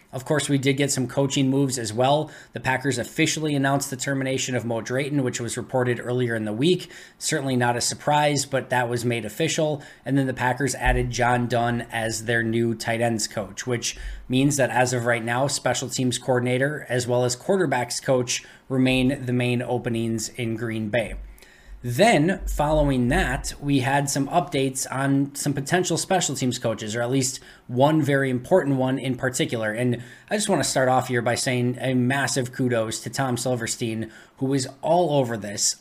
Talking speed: 190 wpm